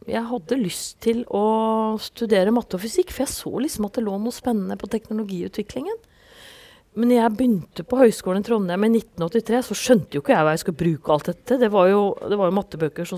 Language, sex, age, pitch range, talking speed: English, female, 30-49, 170-230 Hz, 220 wpm